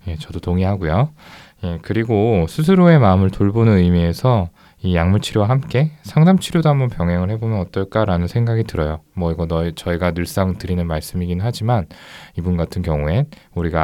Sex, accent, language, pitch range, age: male, native, Korean, 85-110 Hz, 20-39